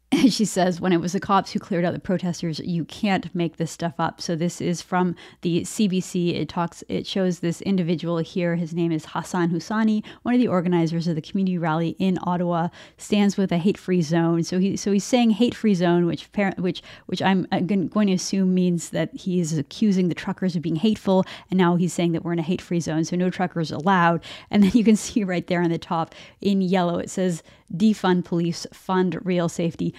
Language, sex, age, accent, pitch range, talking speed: English, female, 30-49, American, 170-200 Hz, 215 wpm